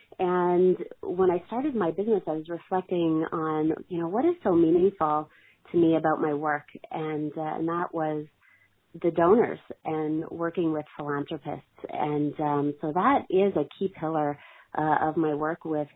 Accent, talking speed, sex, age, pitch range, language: American, 170 wpm, female, 30-49, 150-175 Hz, English